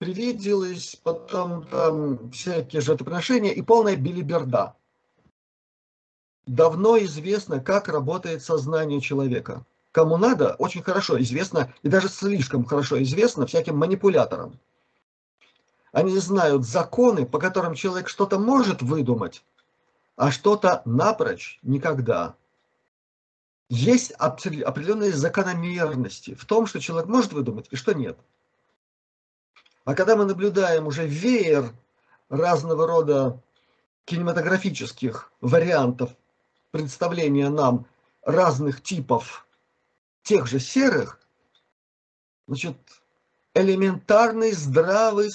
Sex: male